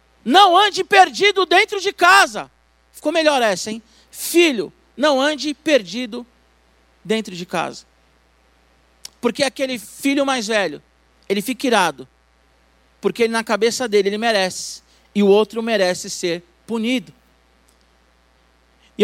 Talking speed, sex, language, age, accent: 120 wpm, male, Portuguese, 40-59, Brazilian